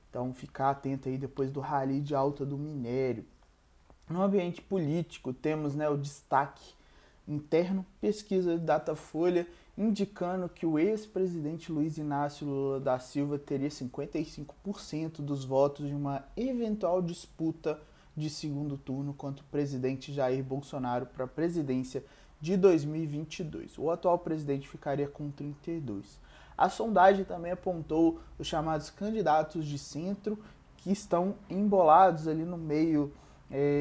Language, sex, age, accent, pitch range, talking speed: Portuguese, male, 20-39, Brazilian, 140-165 Hz, 135 wpm